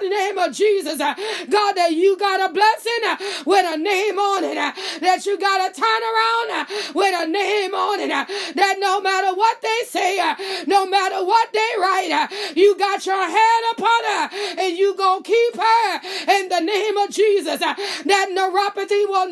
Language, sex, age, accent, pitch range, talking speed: English, female, 30-49, American, 370-420 Hz, 175 wpm